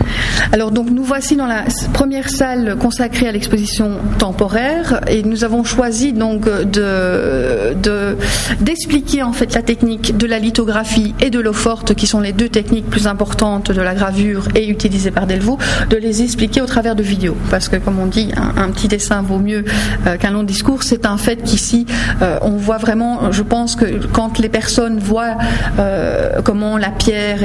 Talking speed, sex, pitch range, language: 185 wpm, female, 210-245 Hz, French